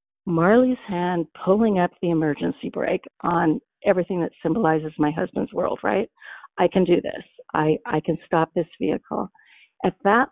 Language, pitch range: English, 170-205 Hz